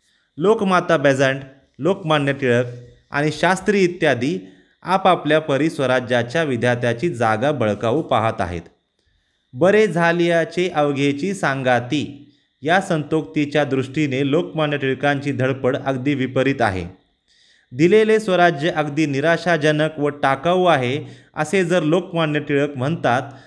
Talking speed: 95 wpm